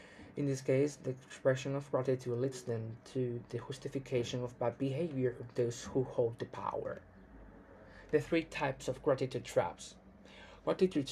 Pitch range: 125-145 Hz